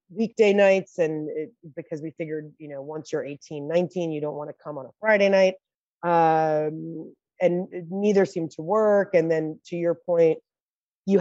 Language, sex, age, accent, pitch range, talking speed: English, female, 30-49, American, 155-190 Hz, 175 wpm